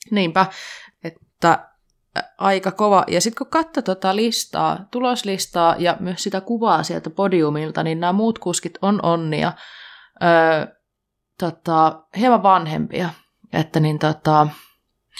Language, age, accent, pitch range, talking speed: Finnish, 20-39, native, 155-190 Hz, 120 wpm